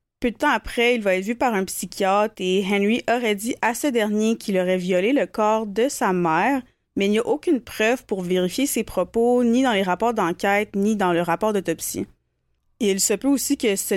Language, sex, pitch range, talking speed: French, female, 185-230 Hz, 225 wpm